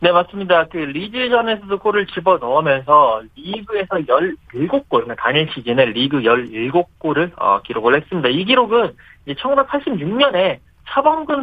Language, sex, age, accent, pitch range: Korean, male, 40-59, native, 135-220 Hz